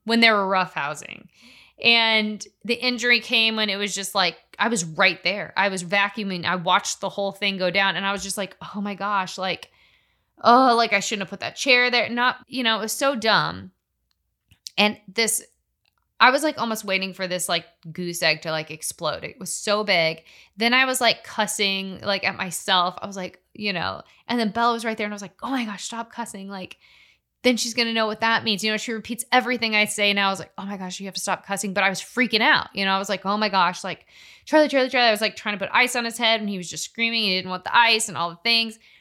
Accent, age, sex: American, 20-39, female